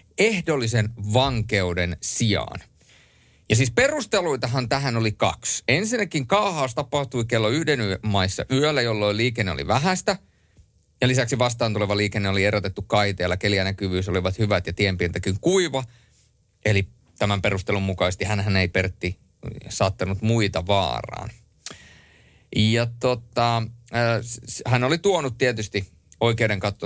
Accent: native